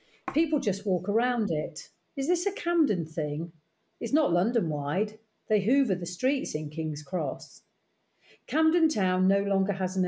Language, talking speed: English, 155 wpm